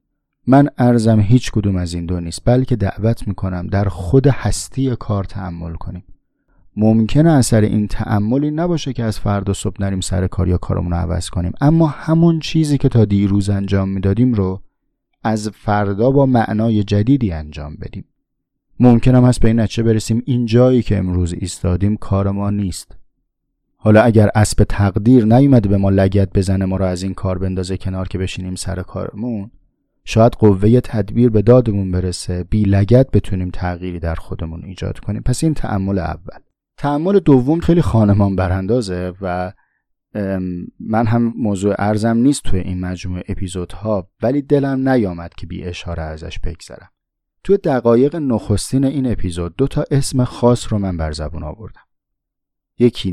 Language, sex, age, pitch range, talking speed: Persian, male, 30-49, 95-120 Hz, 160 wpm